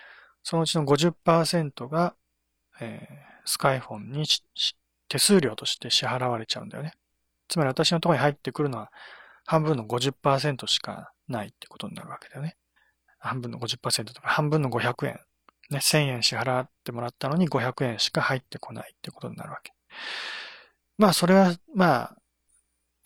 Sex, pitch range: male, 115-165 Hz